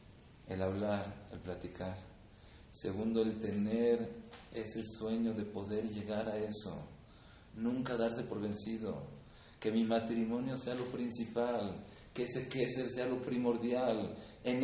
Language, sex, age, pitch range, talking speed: English, male, 40-59, 105-120 Hz, 130 wpm